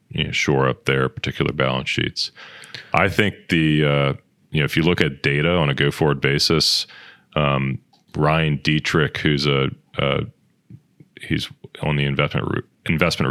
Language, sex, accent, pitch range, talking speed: English, male, American, 70-80 Hz, 160 wpm